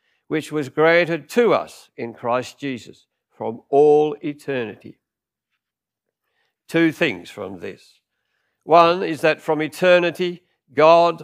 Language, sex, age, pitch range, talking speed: English, male, 60-79, 145-180 Hz, 110 wpm